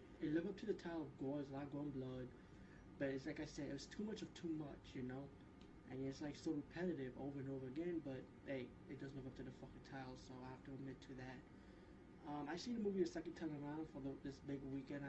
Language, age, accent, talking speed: English, 20-39, American, 265 wpm